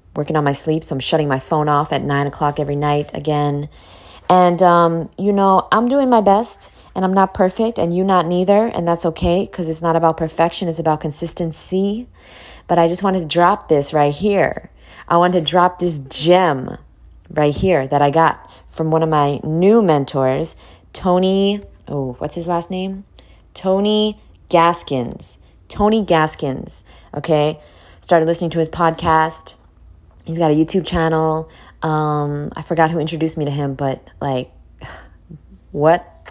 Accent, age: American, 20-39